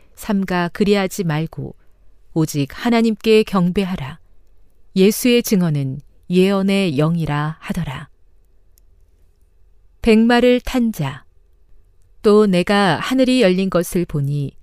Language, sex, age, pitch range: Korean, female, 40-59, 145-215 Hz